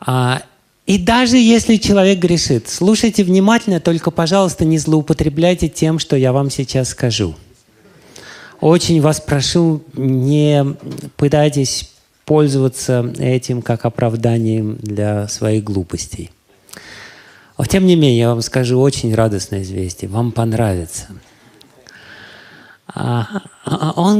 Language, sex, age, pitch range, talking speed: Russian, male, 30-49, 130-190 Hz, 100 wpm